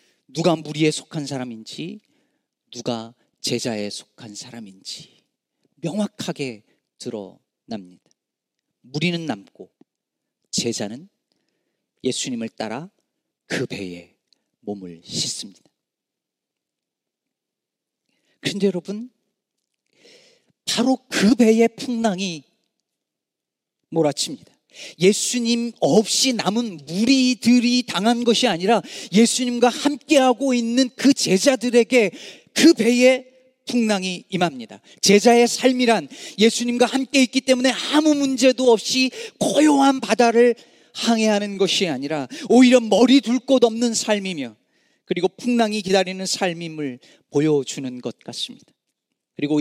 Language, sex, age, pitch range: Korean, male, 40-59, 150-245 Hz